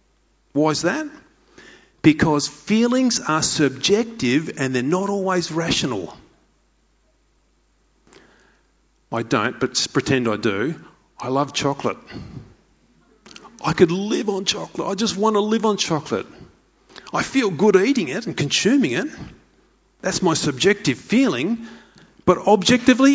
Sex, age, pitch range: male, 40-59, 160-230 Hz